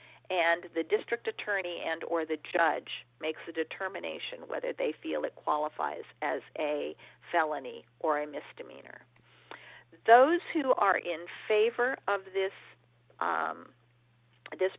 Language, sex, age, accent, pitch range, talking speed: English, female, 50-69, American, 155-260 Hz, 125 wpm